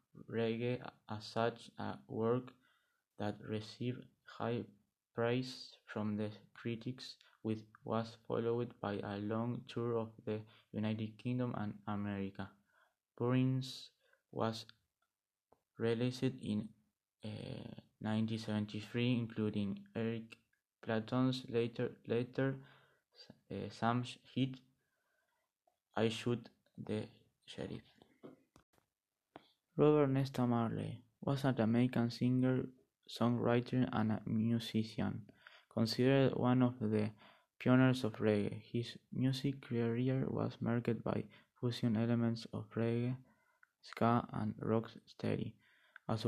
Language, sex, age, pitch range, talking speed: Spanish, male, 20-39, 110-125 Hz, 95 wpm